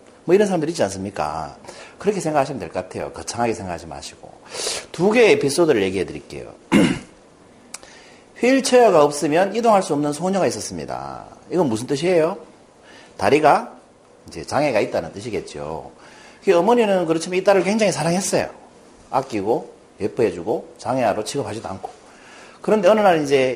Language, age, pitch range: Korean, 40-59, 145-235 Hz